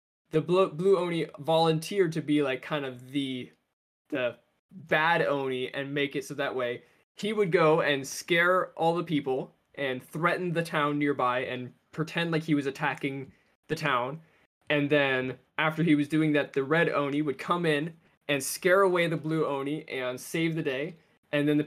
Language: English